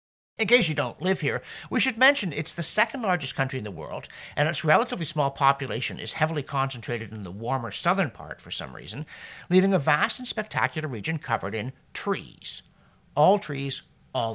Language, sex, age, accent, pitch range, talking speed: English, male, 50-69, American, 130-210 Hz, 190 wpm